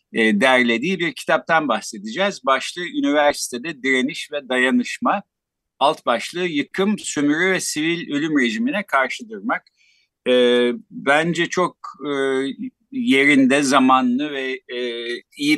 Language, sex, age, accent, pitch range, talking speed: Turkish, male, 50-69, native, 125-195 Hz, 110 wpm